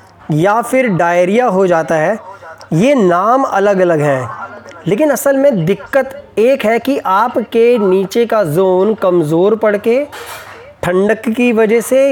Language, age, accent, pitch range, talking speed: Hindi, 20-39, native, 170-225 Hz, 145 wpm